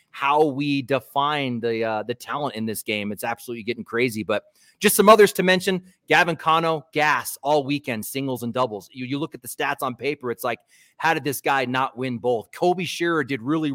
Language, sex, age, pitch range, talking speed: English, male, 30-49, 130-175 Hz, 215 wpm